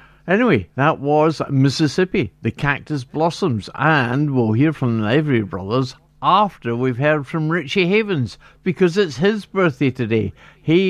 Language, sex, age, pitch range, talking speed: English, male, 50-69, 120-190 Hz, 145 wpm